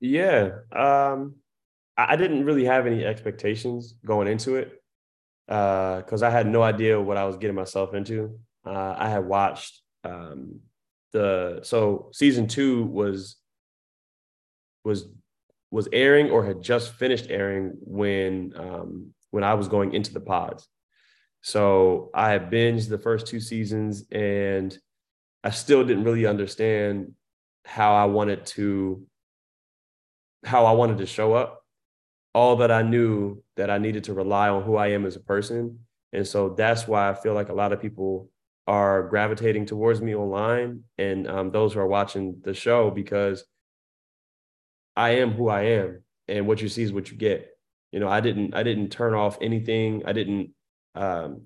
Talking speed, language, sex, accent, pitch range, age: 165 wpm, English, male, American, 100-115 Hz, 20-39